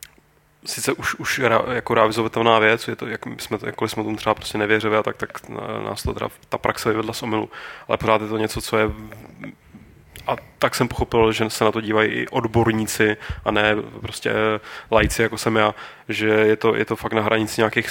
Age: 20-39